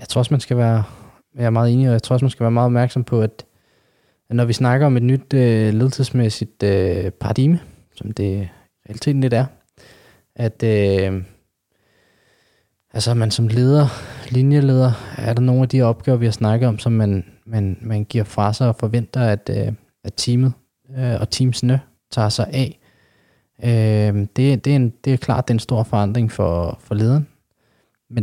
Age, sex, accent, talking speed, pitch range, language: 20-39, male, native, 185 wpm, 110-130 Hz, Danish